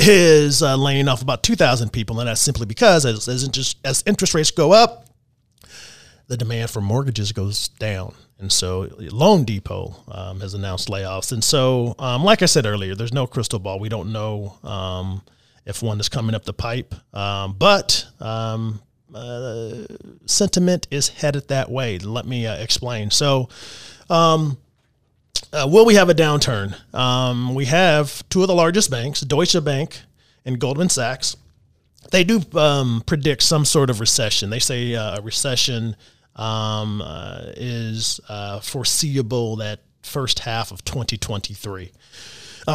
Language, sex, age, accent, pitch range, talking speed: English, male, 30-49, American, 105-150 Hz, 160 wpm